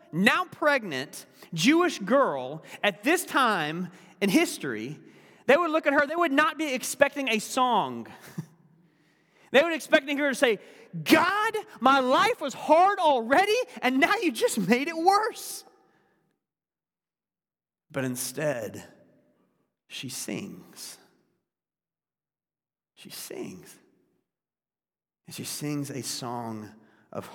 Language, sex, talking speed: English, male, 115 wpm